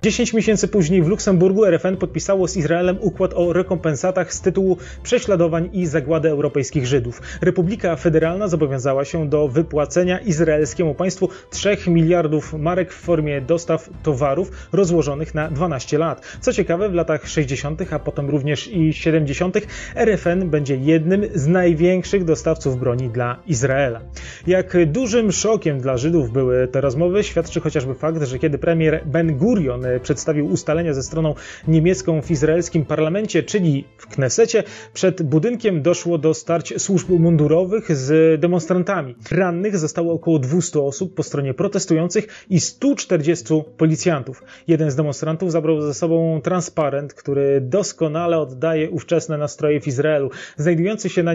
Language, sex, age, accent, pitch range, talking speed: Polish, male, 30-49, native, 150-180 Hz, 140 wpm